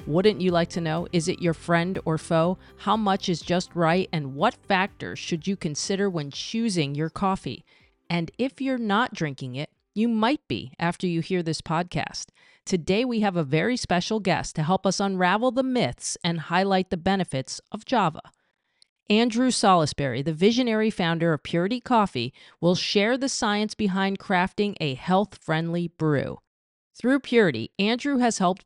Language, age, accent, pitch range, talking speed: English, 40-59, American, 160-205 Hz, 170 wpm